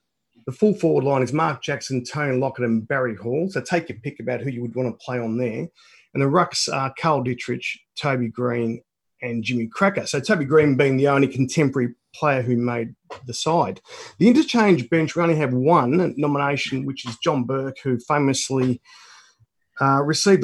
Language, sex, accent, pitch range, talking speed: English, male, Australian, 120-150 Hz, 190 wpm